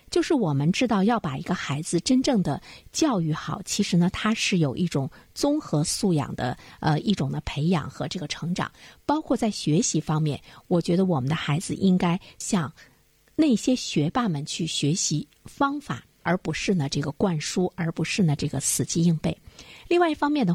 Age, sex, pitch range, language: 50-69, female, 155-215 Hz, Chinese